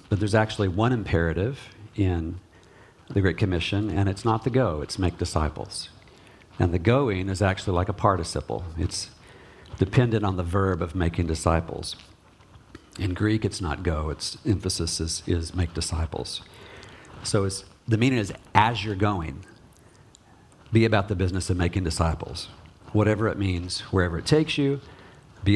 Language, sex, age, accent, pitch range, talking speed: English, male, 50-69, American, 90-115 Hz, 155 wpm